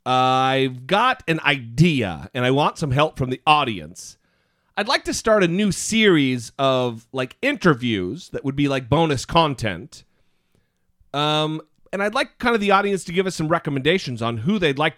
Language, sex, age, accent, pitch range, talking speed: English, male, 40-59, American, 125-170 Hz, 180 wpm